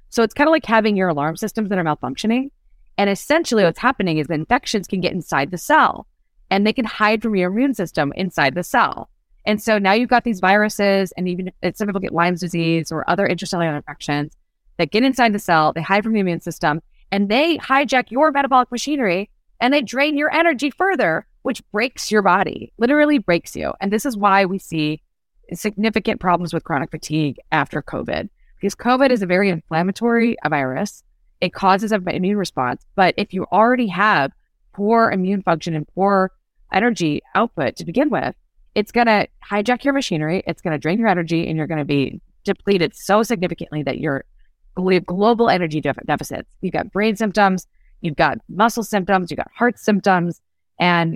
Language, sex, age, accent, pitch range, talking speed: English, female, 30-49, American, 170-225 Hz, 190 wpm